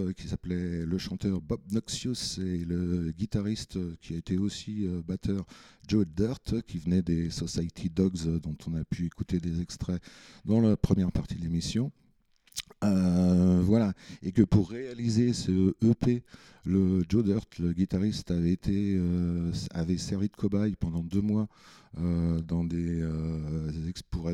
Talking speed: 145 wpm